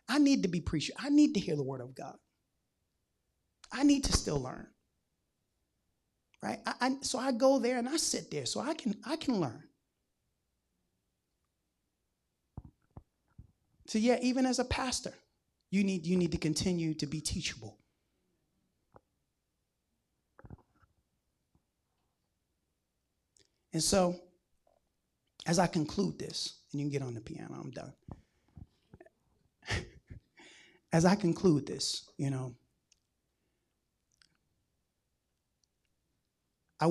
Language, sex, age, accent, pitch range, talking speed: English, male, 30-49, American, 135-195 Hz, 115 wpm